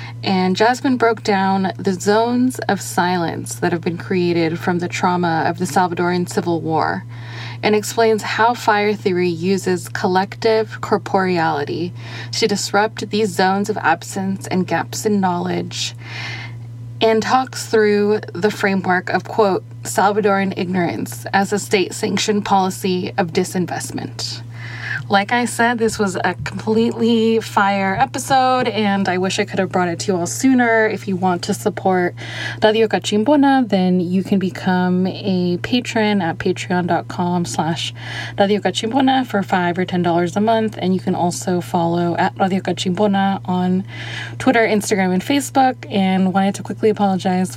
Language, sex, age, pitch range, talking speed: English, female, 20-39, 175-210 Hz, 145 wpm